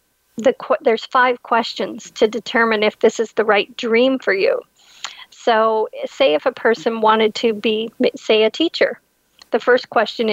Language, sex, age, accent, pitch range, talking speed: English, female, 40-59, American, 215-245 Hz, 155 wpm